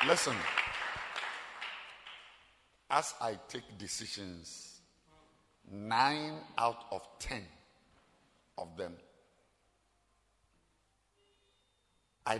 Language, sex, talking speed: English, male, 60 wpm